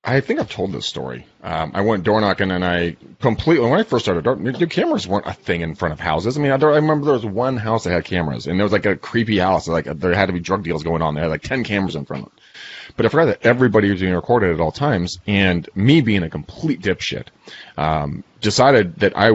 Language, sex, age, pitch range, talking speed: English, male, 30-49, 90-130 Hz, 265 wpm